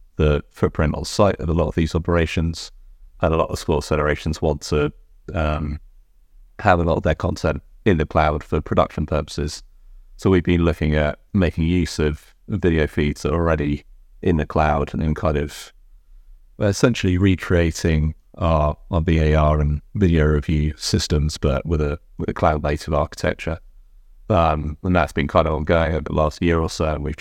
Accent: British